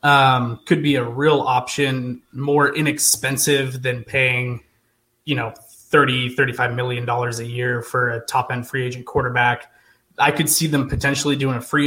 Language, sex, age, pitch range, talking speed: English, male, 20-39, 125-145 Hz, 160 wpm